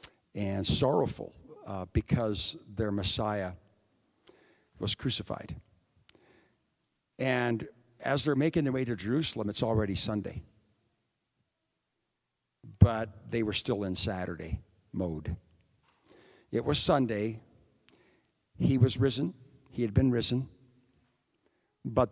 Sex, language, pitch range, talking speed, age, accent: male, English, 105-140 Hz, 100 wpm, 60-79, American